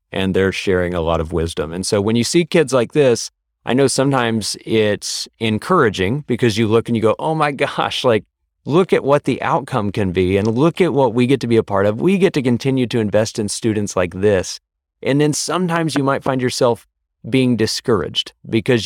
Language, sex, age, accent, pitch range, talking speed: English, male, 30-49, American, 100-130 Hz, 215 wpm